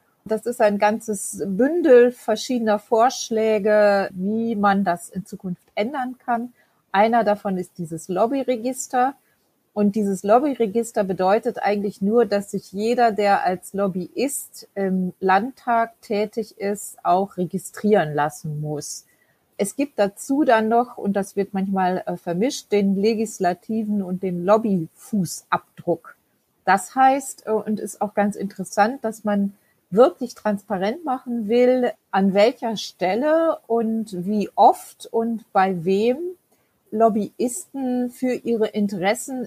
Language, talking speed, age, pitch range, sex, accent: German, 120 wpm, 30-49, 190-230 Hz, female, German